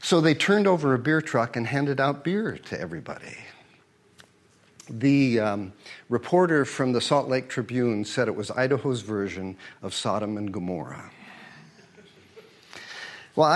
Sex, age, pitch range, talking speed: male, 50-69, 105-135 Hz, 135 wpm